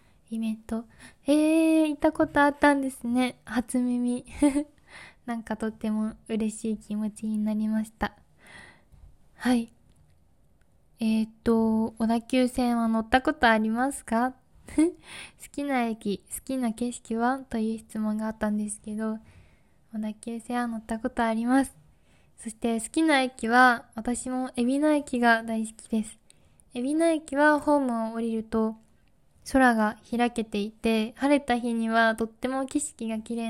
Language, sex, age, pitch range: Japanese, female, 20-39, 220-255 Hz